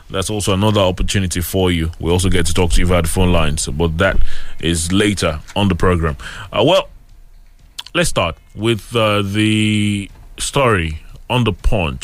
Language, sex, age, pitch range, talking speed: English, male, 20-39, 100-135 Hz, 175 wpm